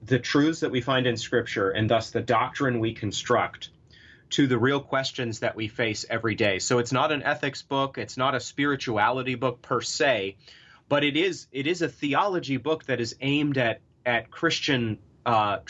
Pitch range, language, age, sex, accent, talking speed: 115-135 Hz, English, 30-49, male, American, 190 wpm